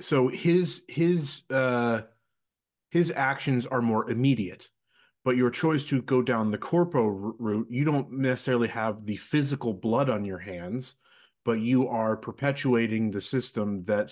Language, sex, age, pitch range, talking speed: English, male, 30-49, 105-130 Hz, 150 wpm